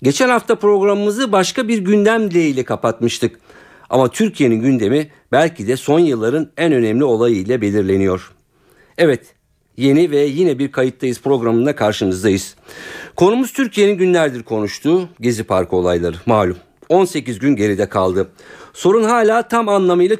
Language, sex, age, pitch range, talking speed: Turkish, male, 50-69, 120-175 Hz, 130 wpm